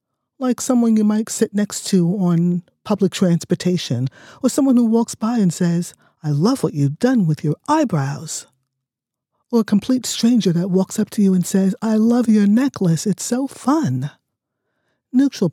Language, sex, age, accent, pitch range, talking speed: English, male, 50-69, American, 150-200 Hz, 170 wpm